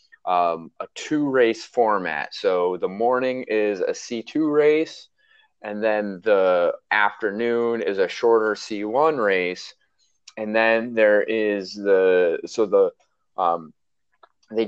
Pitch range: 105-150 Hz